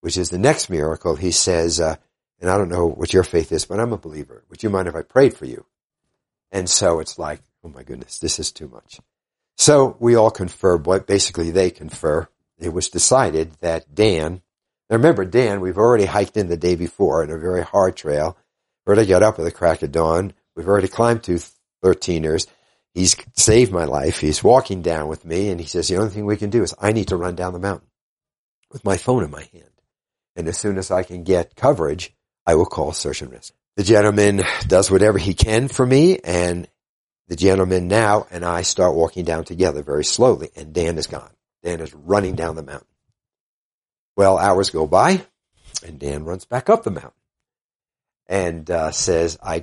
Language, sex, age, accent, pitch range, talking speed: English, male, 60-79, American, 85-100 Hz, 210 wpm